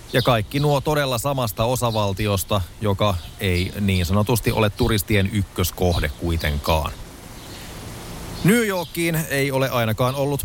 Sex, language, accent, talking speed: male, Finnish, native, 115 wpm